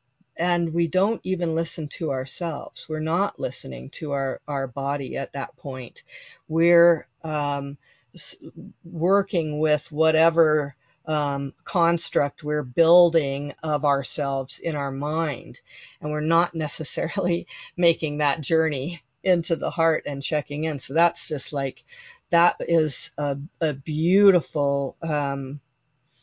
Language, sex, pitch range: English, female, 135-165 Hz